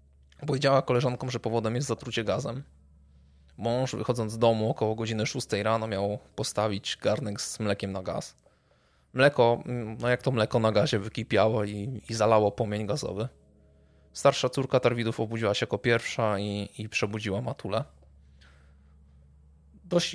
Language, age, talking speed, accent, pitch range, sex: Polish, 20-39, 140 wpm, native, 100-120 Hz, male